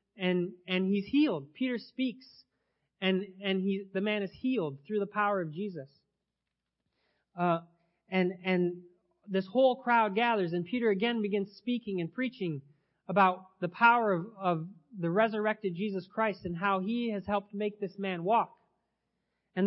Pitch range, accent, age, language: 170-210 Hz, American, 30-49, English